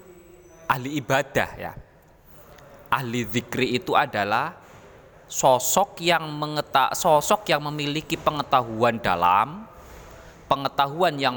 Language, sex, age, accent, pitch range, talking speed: Indonesian, male, 20-39, native, 115-145 Hz, 90 wpm